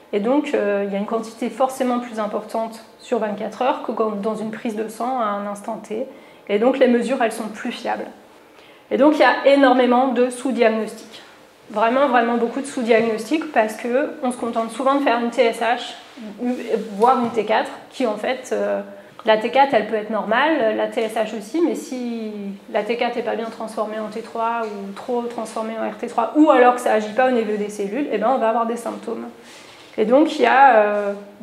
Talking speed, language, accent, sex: 205 wpm, English, French, female